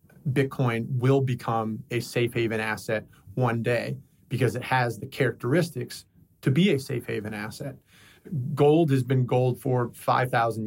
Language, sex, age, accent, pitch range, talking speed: English, male, 30-49, American, 115-135 Hz, 145 wpm